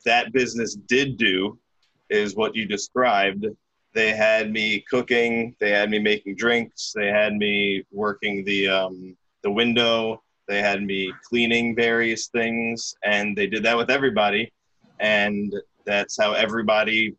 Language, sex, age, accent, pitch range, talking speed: English, male, 20-39, American, 105-120 Hz, 145 wpm